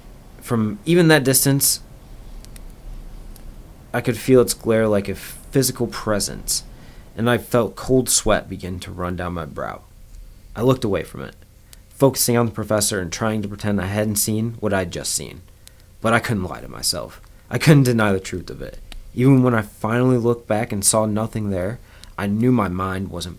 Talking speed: 185 wpm